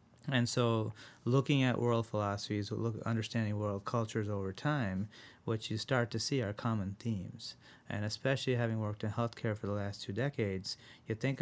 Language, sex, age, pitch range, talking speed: English, male, 30-49, 100-120 Hz, 170 wpm